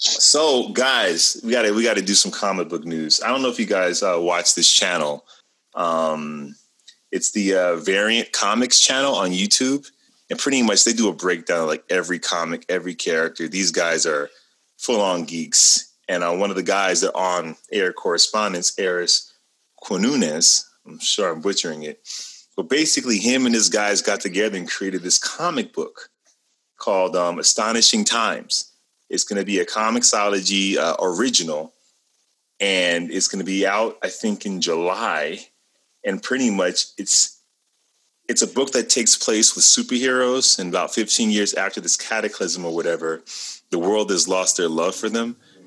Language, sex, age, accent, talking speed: English, male, 30-49, American, 165 wpm